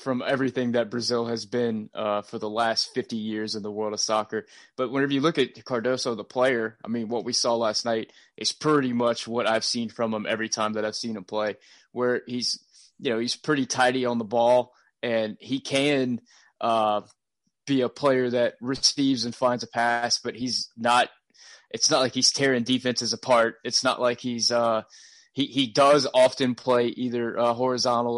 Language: English